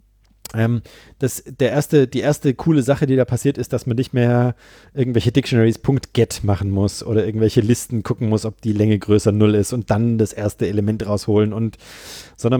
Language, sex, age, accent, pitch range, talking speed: German, male, 40-59, German, 105-135 Hz, 165 wpm